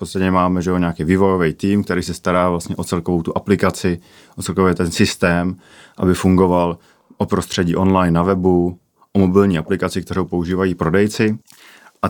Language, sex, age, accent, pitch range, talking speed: Czech, male, 30-49, native, 85-95 Hz, 170 wpm